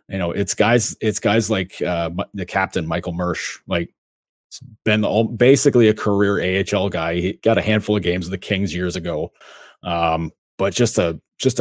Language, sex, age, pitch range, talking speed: English, male, 30-49, 90-110 Hz, 195 wpm